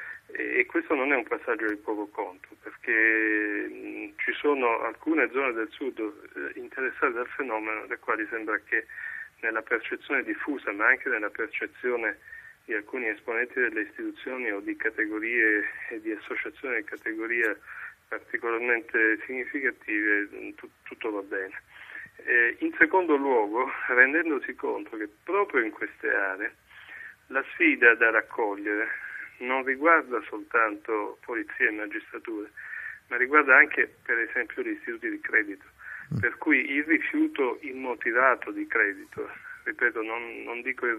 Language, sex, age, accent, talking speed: Italian, male, 30-49, native, 130 wpm